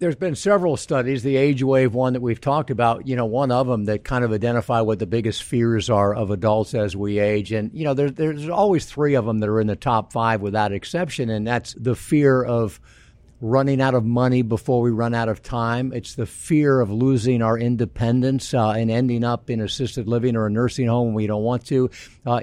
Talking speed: 235 wpm